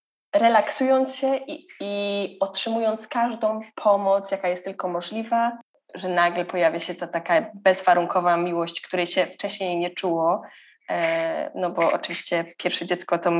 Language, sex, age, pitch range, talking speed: Polish, female, 20-39, 180-215 Hz, 135 wpm